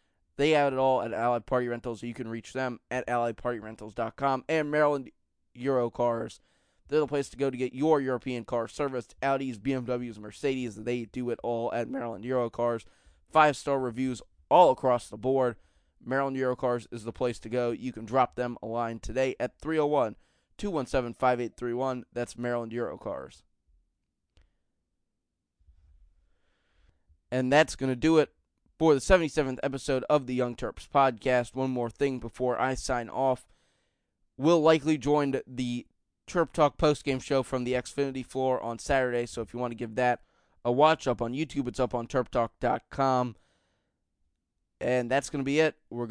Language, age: English, 20-39